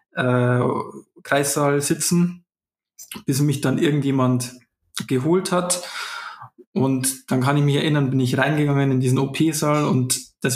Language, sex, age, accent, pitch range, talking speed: German, male, 20-39, German, 130-155 Hz, 130 wpm